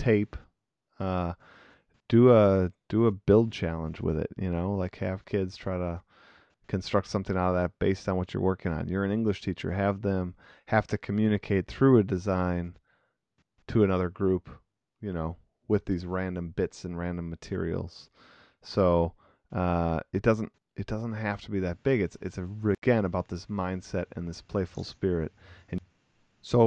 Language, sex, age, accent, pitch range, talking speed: English, male, 30-49, American, 85-105 Hz, 170 wpm